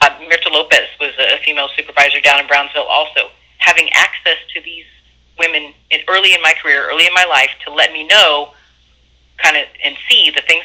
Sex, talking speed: female, 195 wpm